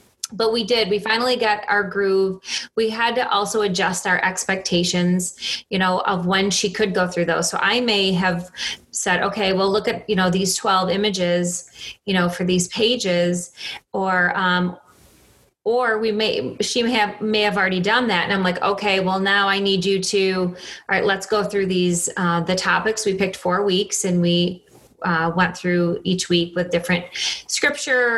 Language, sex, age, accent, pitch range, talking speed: English, female, 30-49, American, 180-210 Hz, 190 wpm